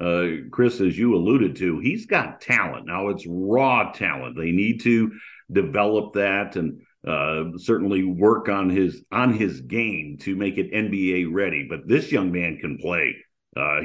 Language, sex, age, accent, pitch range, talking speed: English, male, 50-69, American, 90-110 Hz, 170 wpm